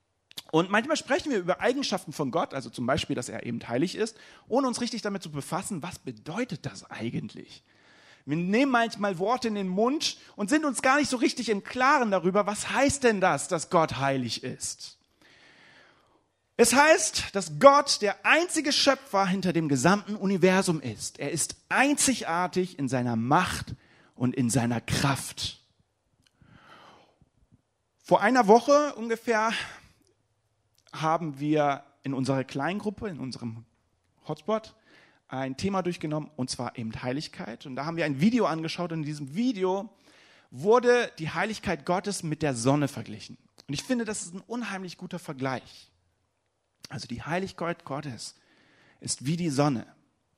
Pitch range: 135-210 Hz